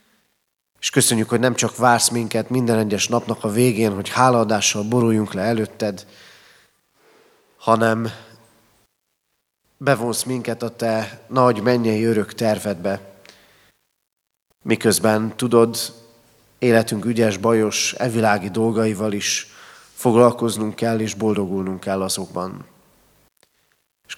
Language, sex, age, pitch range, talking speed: Hungarian, male, 30-49, 105-120 Hz, 100 wpm